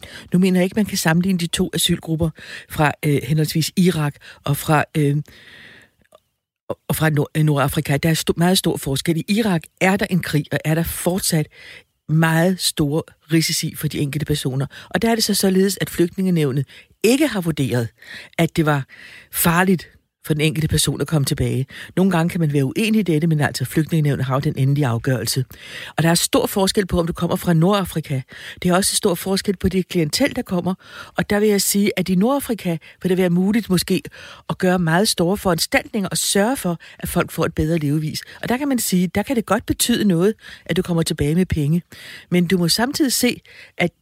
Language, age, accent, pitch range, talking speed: Danish, 60-79, native, 155-195 Hz, 210 wpm